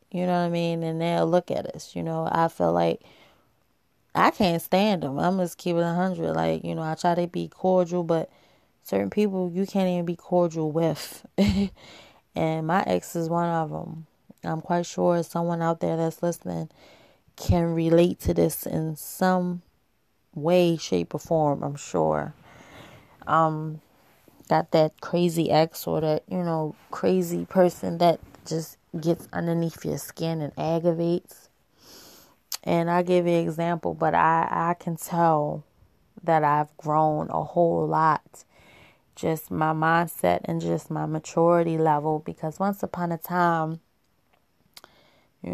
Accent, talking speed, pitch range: American, 155 wpm, 155-175 Hz